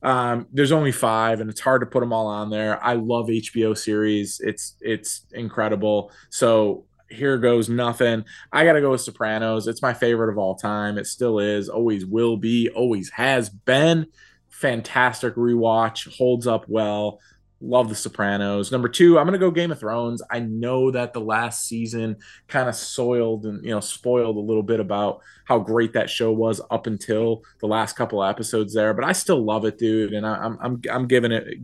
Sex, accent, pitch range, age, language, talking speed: male, American, 110-130 Hz, 20-39, English, 195 wpm